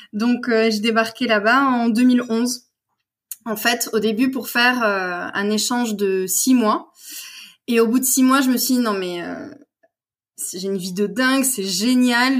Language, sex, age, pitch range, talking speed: French, female, 20-39, 210-265 Hz, 190 wpm